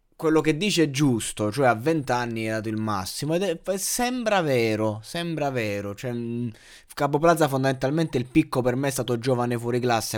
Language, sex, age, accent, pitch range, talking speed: Italian, male, 20-39, native, 115-140 Hz, 190 wpm